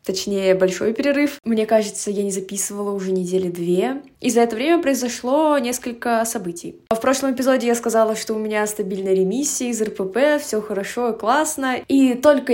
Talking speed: 170 wpm